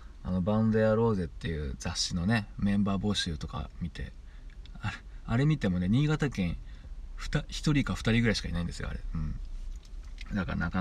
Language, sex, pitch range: Japanese, male, 75-105 Hz